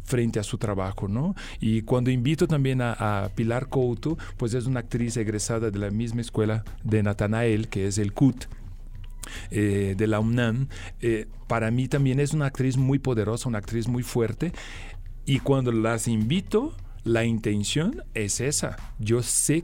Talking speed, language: 170 wpm, Spanish